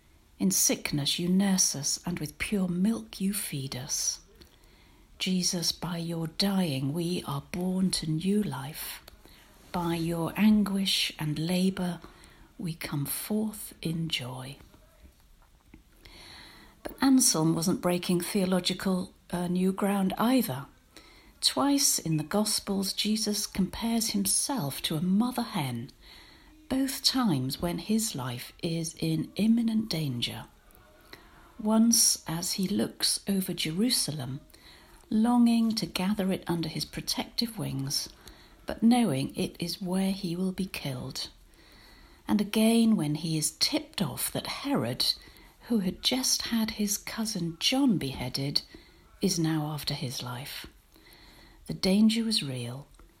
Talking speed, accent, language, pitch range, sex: 125 wpm, British, English, 160-215 Hz, female